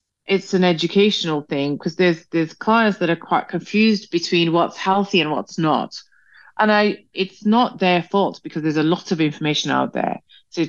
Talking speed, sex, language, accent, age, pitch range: 185 wpm, female, English, British, 30-49, 150-190 Hz